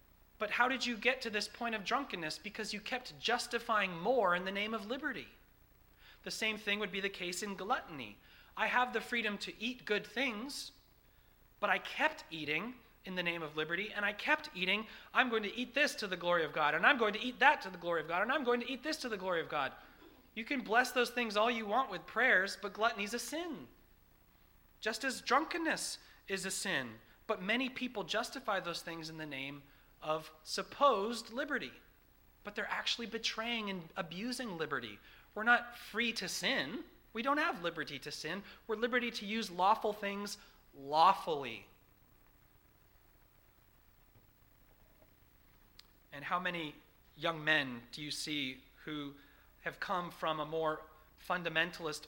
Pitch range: 160-240 Hz